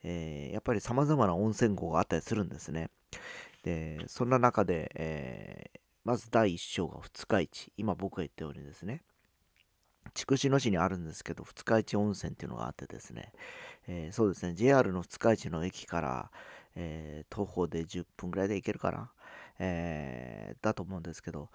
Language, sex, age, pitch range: Japanese, male, 40-59, 85-115 Hz